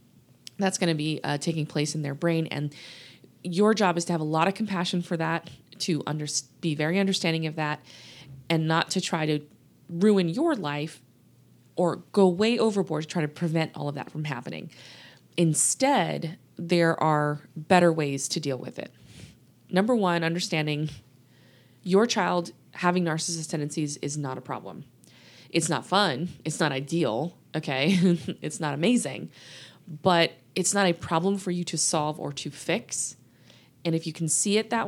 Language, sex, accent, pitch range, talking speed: English, female, American, 150-185 Hz, 170 wpm